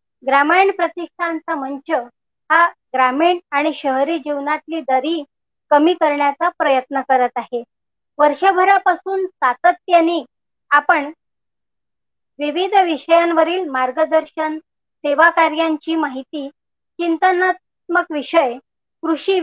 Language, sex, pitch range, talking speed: Marathi, male, 280-340 Hz, 80 wpm